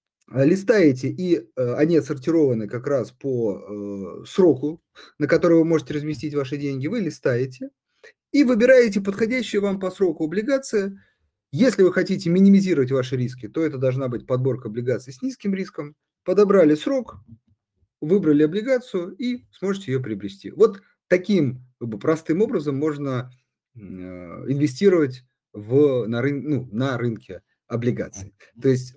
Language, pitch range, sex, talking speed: Russian, 125-185 Hz, male, 125 wpm